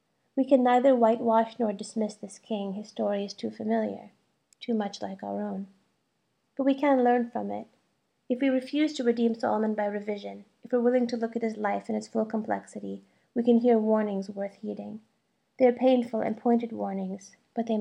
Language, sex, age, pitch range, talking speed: English, female, 30-49, 205-240 Hz, 190 wpm